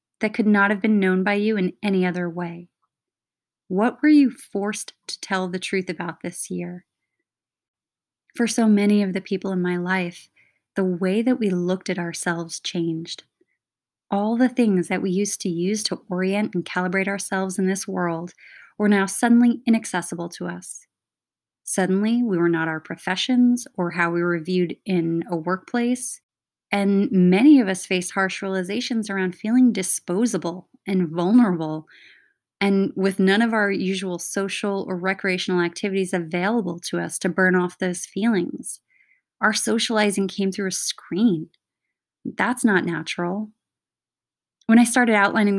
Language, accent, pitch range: English, American, 180-220 Hz